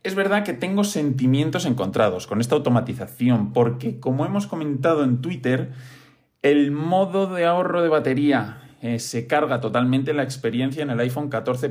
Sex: male